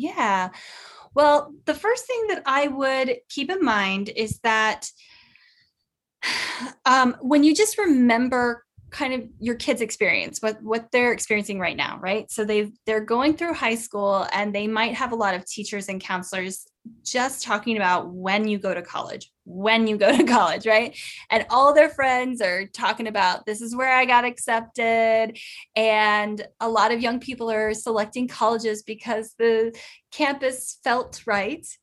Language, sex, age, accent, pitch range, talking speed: English, female, 10-29, American, 210-255 Hz, 165 wpm